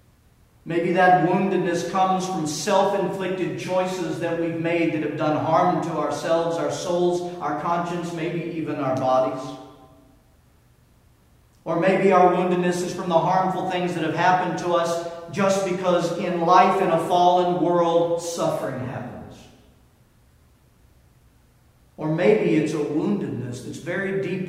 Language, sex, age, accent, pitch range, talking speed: English, male, 50-69, American, 150-180 Hz, 135 wpm